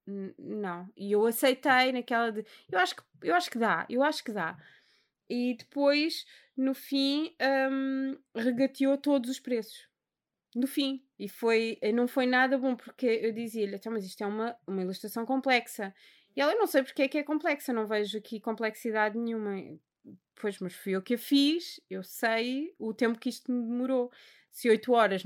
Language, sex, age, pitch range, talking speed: Portuguese, female, 20-39, 205-260 Hz, 175 wpm